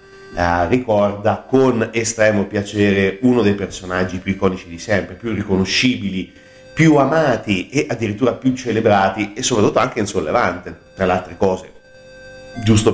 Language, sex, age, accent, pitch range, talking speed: Italian, male, 40-59, native, 95-115 Hz, 130 wpm